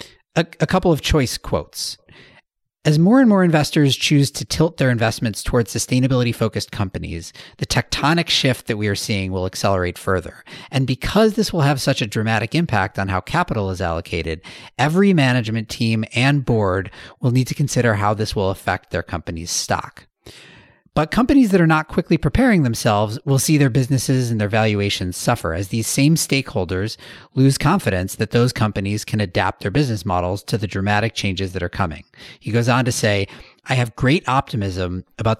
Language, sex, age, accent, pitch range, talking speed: English, male, 40-59, American, 100-150 Hz, 180 wpm